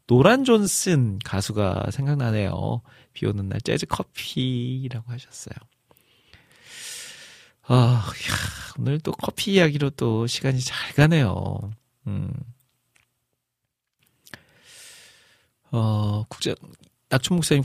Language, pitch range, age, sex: Korean, 115-150 Hz, 40-59, male